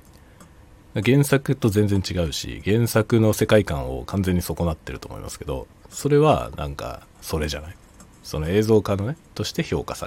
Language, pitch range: Japanese, 75-110 Hz